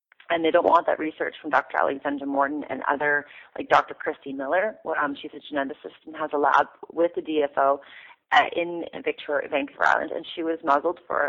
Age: 30-49